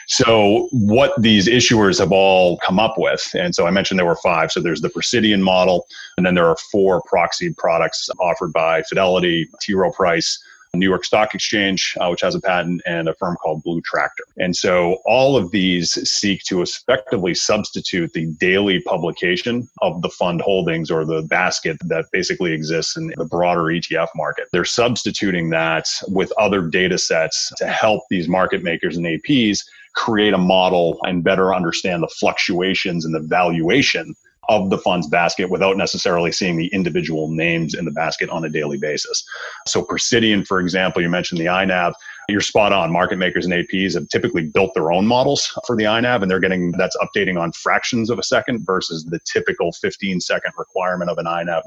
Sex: male